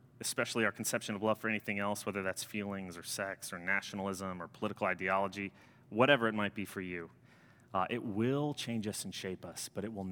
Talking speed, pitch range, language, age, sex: 210 wpm, 100-125 Hz, English, 30-49, male